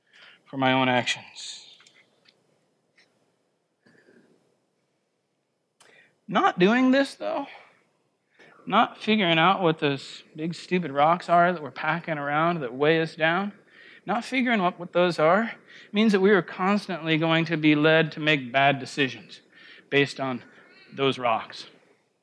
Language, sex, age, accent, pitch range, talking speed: English, male, 40-59, American, 135-175 Hz, 125 wpm